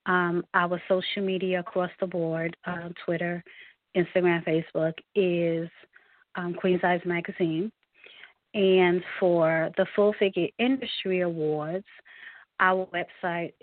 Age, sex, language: 30-49, female, English